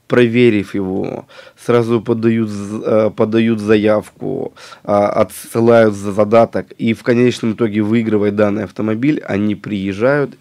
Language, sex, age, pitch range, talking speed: Russian, male, 20-39, 105-135 Hz, 105 wpm